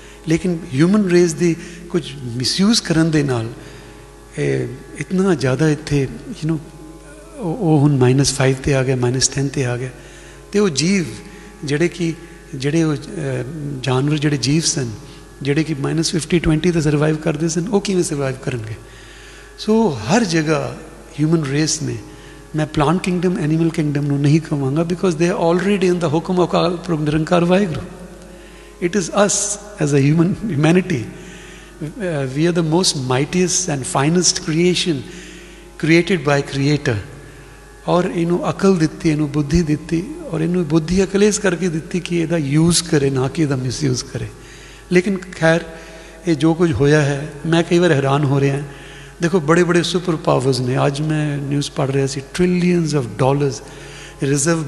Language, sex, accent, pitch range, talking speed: English, male, Indian, 140-175 Hz, 125 wpm